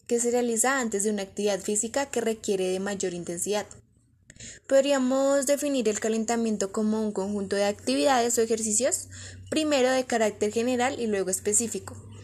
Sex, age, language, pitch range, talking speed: female, 10-29, Spanish, 195-250 Hz, 150 wpm